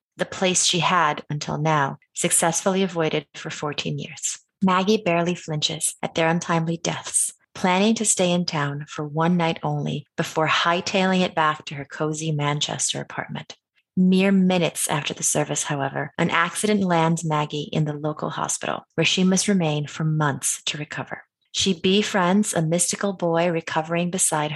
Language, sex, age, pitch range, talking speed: English, female, 30-49, 160-190 Hz, 160 wpm